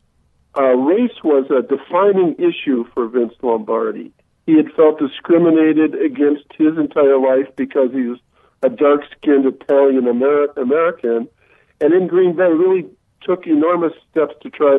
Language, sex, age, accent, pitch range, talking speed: English, male, 50-69, American, 130-170 Hz, 135 wpm